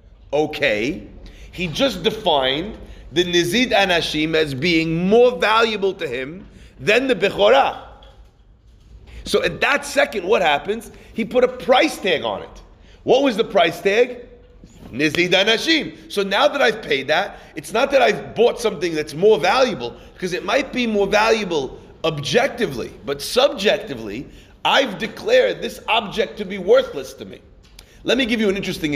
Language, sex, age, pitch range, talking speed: English, male, 40-59, 145-215 Hz, 155 wpm